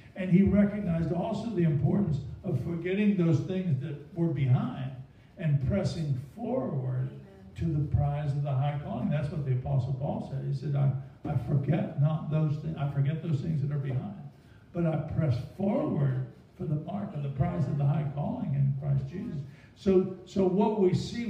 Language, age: English, 60-79